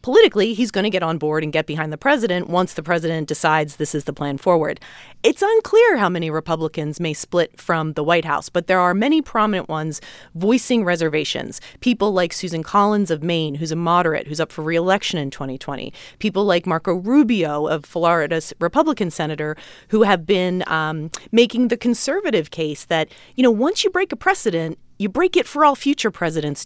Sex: female